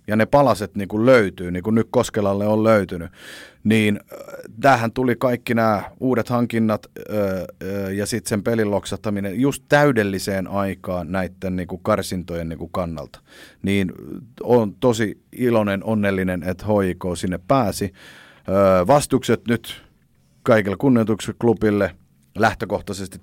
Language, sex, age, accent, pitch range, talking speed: Finnish, male, 30-49, native, 95-110 Hz, 120 wpm